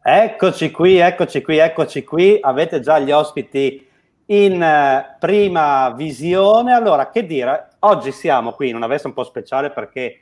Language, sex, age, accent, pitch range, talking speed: Italian, male, 40-59, native, 135-185 Hz, 155 wpm